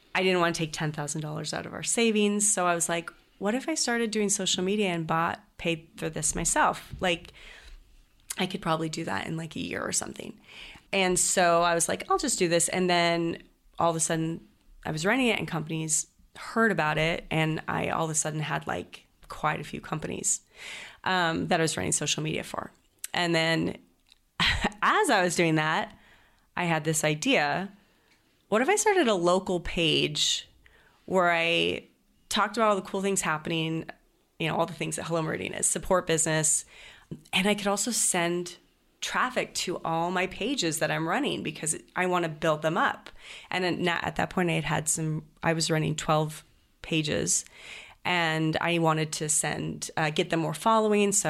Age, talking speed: 30-49, 195 wpm